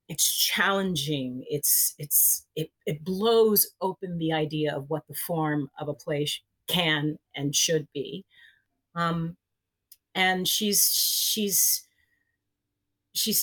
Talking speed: 120 wpm